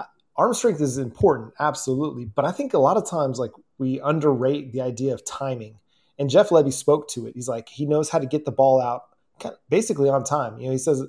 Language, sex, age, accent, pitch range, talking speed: English, male, 30-49, American, 125-145 Hz, 240 wpm